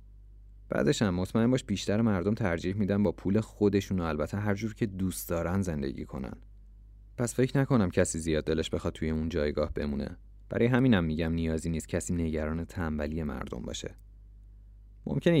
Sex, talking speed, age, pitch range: male, 165 wpm, 30-49, 85-105 Hz